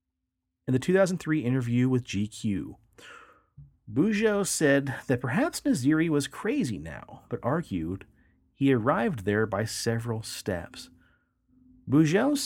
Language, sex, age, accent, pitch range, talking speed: English, male, 40-59, American, 105-160 Hz, 110 wpm